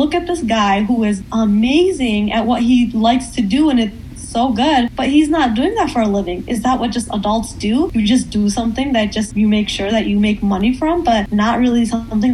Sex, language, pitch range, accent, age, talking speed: female, English, 205-245 Hz, American, 10-29, 240 wpm